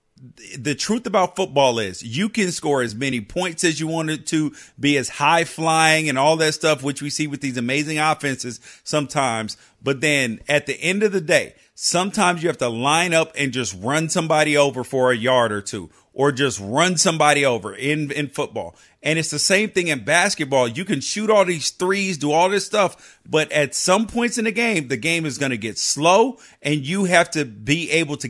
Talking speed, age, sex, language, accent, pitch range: 215 wpm, 40-59, male, English, American, 145-185 Hz